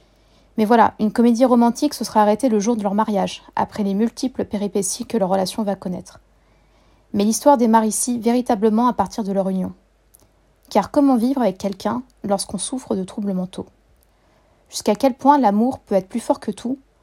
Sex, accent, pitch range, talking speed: female, French, 205-235 Hz, 185 wpm